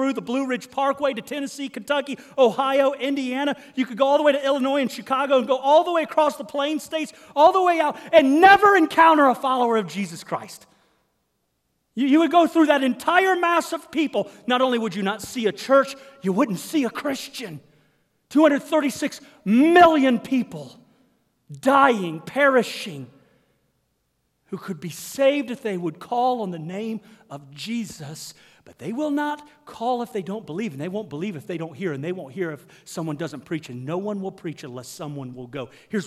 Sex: male